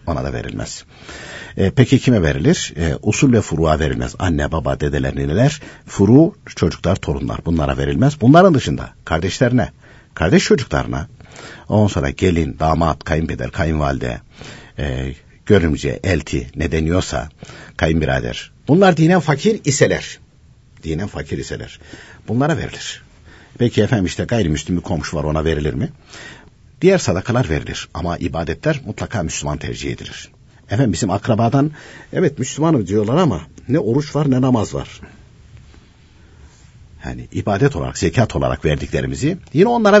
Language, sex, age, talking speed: Turkish, male, 60-79, 130 wpm